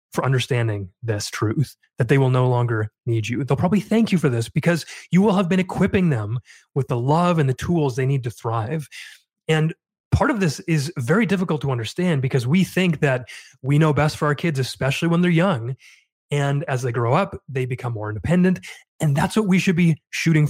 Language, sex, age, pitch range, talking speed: English, male, 30-49, 130-170 Hz, 215 wpm